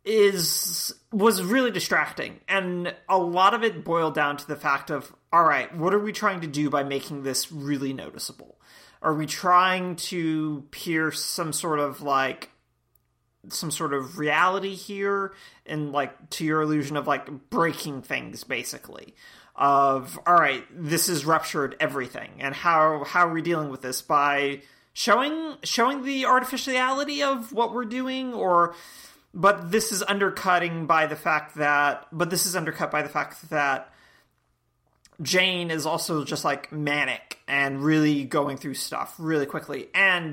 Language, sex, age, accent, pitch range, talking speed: English, male, 30-49, American, 145-180 Hz, 160 wpm